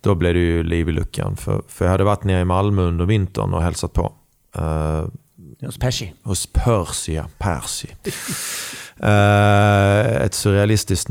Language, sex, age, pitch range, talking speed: Swedish, male, 30-49, 90-115 Hz, 150 wpm